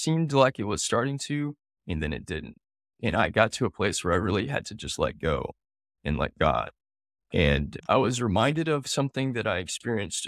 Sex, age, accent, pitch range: male, 30-49, American, 90-140 Hz